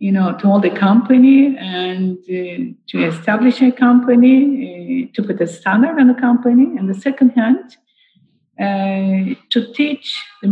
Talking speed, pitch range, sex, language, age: 160 wpm, 185-250 Hz, female, English, 50-69